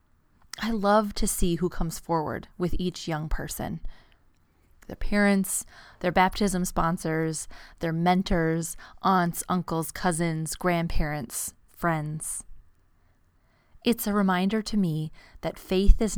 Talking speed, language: 110 wpm, English